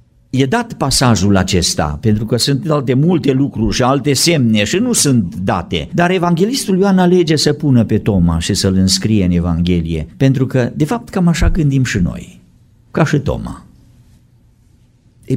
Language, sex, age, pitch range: Romanian, male, 50-69, 105-150 Hz